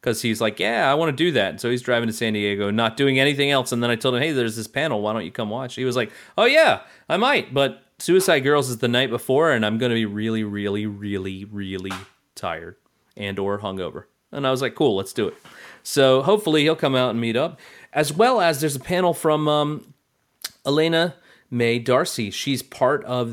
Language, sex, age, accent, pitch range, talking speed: English, male, 30-49, American, 110-135 Hz, 235 wpm